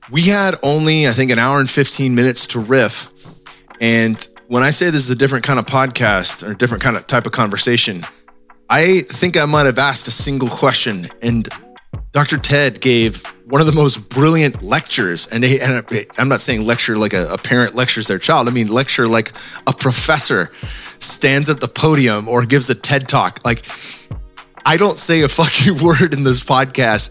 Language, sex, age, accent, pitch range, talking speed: English, male, 20-39, American, 115-140 Hz, 195 wpm